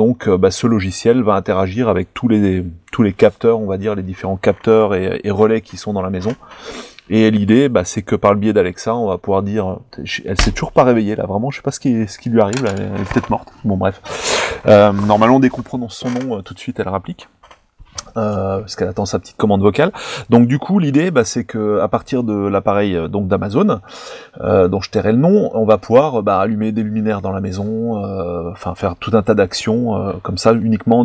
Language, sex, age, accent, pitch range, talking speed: French, male, 30-49, French, 100-120 Hz, 240 wpm